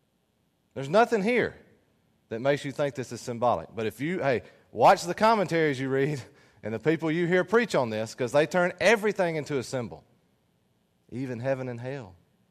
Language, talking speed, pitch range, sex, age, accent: English, 180 wpm, 115-150 Hz, male, 30-49, American